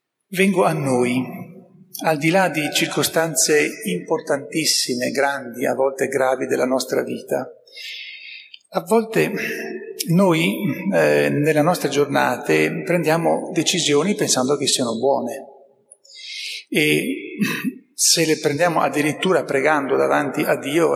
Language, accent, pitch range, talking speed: Italian, native, 140-220 Hz, 110 wpm